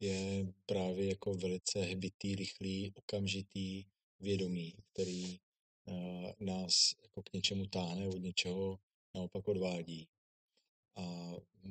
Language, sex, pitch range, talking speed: Czech, male, 95-105 Hz, 95 wpm